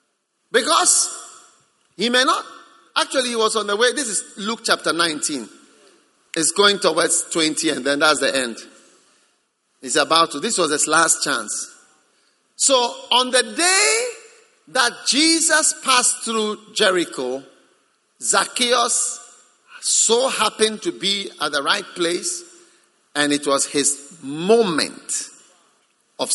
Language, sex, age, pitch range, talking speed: English, male, 50-69, 170-275 Hz, 130 wpm